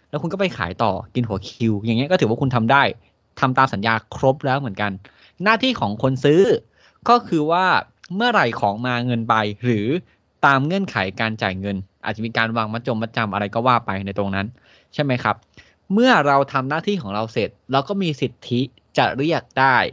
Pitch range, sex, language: 110-145 Hz, male, Thai